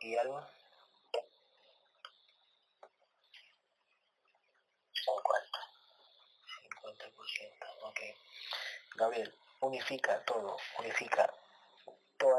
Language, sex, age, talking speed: Spanish, male, 30-49, 50 wpm